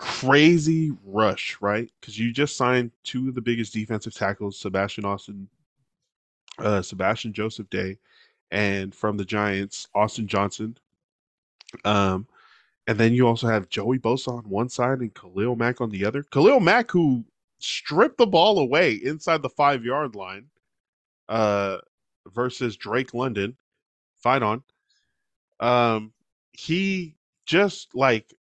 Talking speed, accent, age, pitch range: 130 wpm, American, 20-39, 105-135 Hz